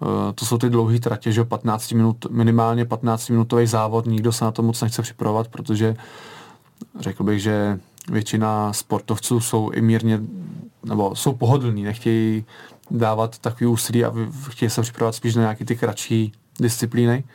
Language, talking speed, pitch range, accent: Czech, 150 wpm, 110-120 Hz, native